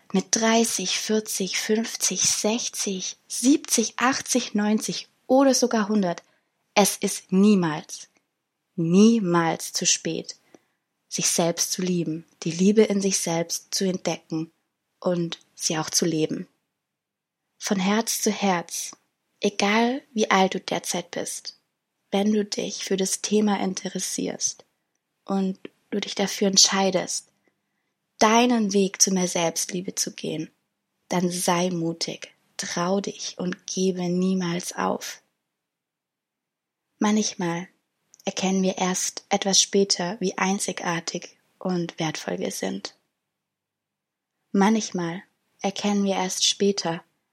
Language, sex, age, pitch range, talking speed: German, female, 20-39, 175-210 Hz, 110 wpm